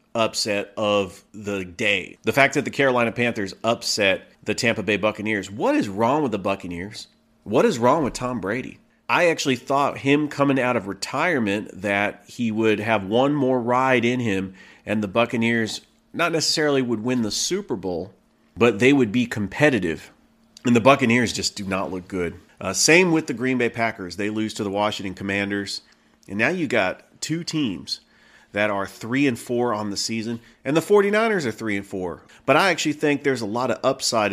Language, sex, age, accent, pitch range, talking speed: English, male, 40-59, American, 105-140 Hz, 190 wpm